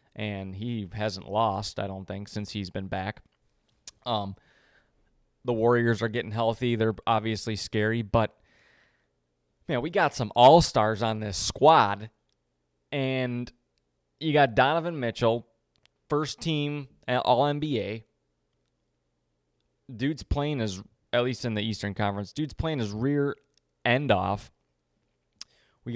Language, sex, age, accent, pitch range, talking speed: English, male, 20-39, American, 85-120 Hz, 125 wpm